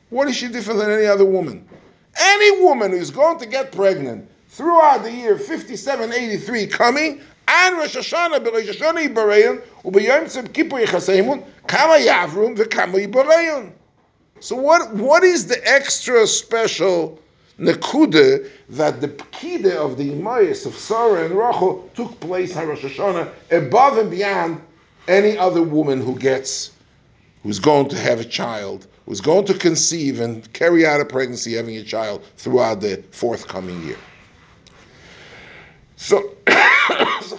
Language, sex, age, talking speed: English, male, 50-69, 130 wpm